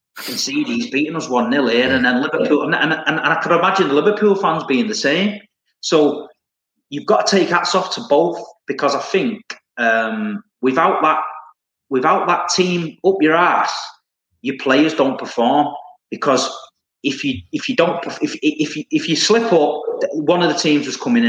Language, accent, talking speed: English, British, 195 wpm